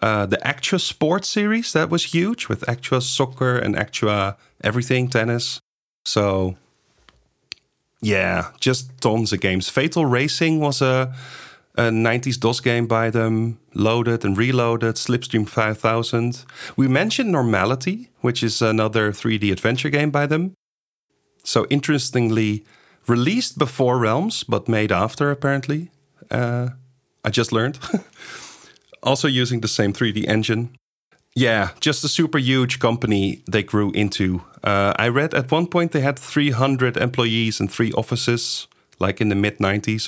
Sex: male